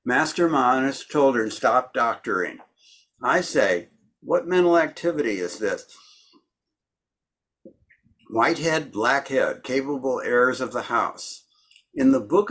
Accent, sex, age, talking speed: American, male, 60-79, 100 wpm